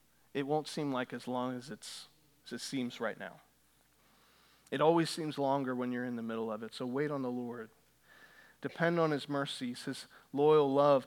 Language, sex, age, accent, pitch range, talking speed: English, male, 40-59, American, 130-160 Hz, 190 wpm